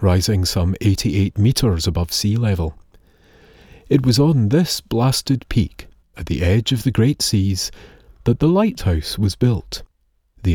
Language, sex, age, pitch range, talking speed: English, male, 40-59, 80-105 Hz, 150 wpm